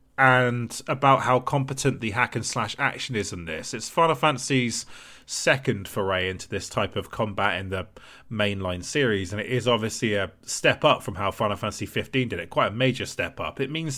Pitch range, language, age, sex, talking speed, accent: 105-130 Hz, English, 30-49, male, 195 wpm, British